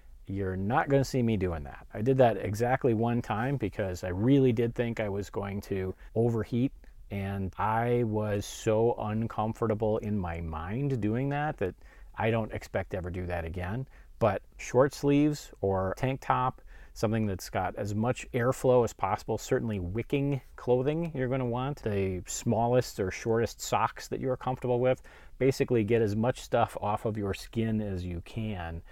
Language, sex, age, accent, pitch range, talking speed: English, male, 30-49, American, 95-120 Hz, 175 wpm